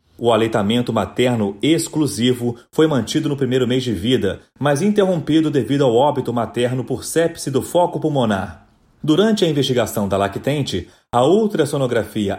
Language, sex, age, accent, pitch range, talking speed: Portuguese, male, 30-49, Brazilian, 115-160 Hz, 140 wpm